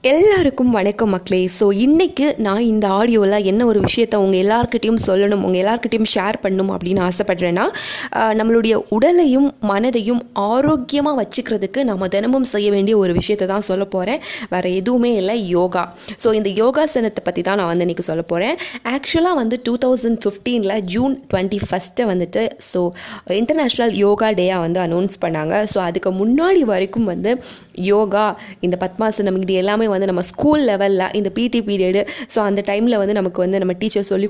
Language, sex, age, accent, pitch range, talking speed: Tamil, female, 20-39, native, 190-230 Hz, 150 wpm